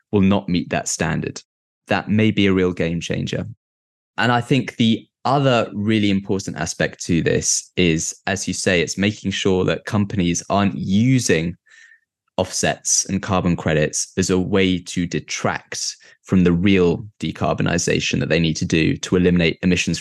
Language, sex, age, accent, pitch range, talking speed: English, male, 20-39, British, 90-115 Hz, 160 wpm